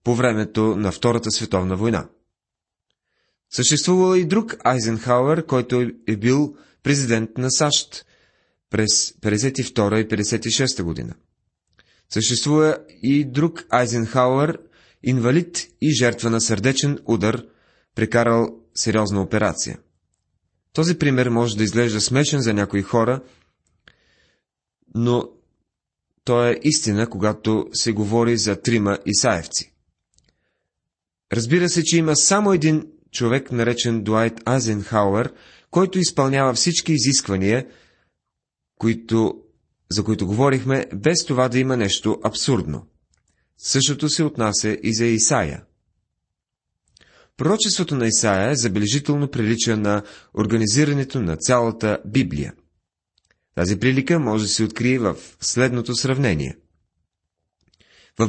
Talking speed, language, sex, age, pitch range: 105 wpm, Bulgarian, male, 30-49, 105-135 Hz